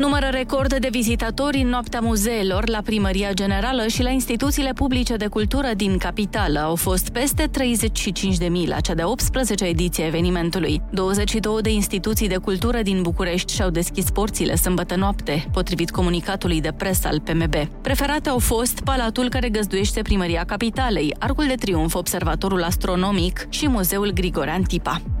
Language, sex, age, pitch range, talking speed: Romanian, female, 20-39, 180-235 Hz, 150 wpm